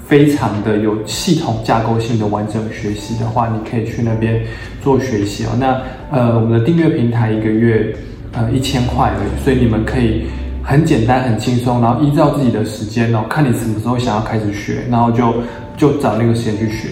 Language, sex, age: Chinese, male, 20-39